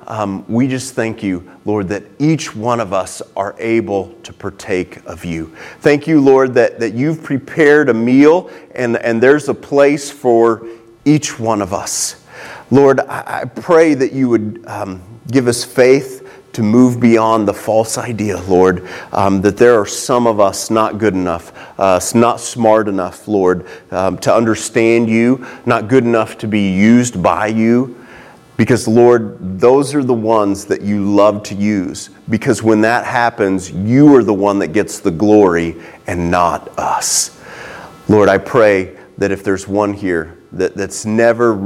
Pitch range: 95-120 Hz